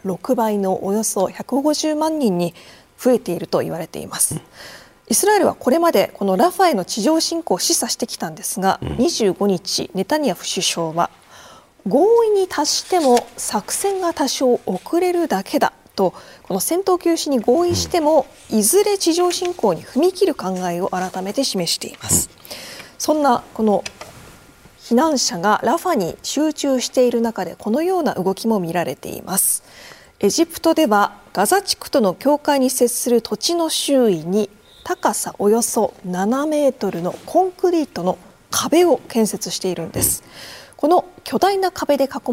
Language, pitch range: Japanese, 200-315 Hz